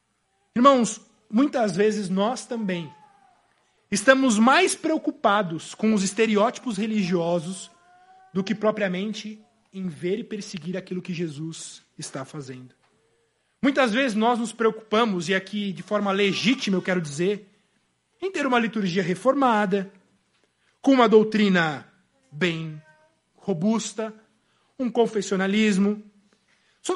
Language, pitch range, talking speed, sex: Portuguese, 185-245 Hz, 110 wpm, male